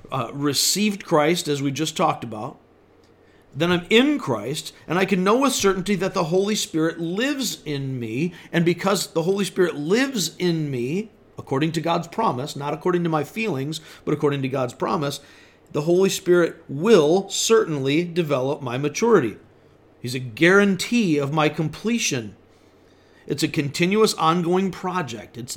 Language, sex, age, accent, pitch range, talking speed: English, male, 50-69, American, 140-185 Hz, 155 wpm